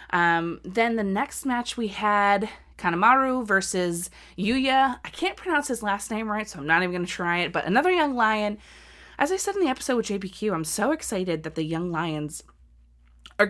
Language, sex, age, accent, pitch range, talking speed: English, female, 20-39, American, 165-225 Hz, 200 wpm